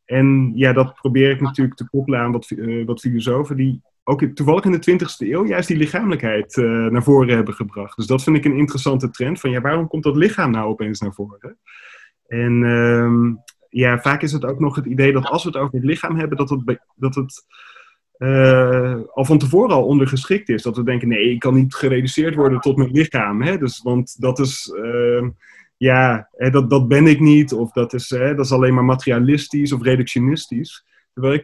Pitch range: 120-140 Hz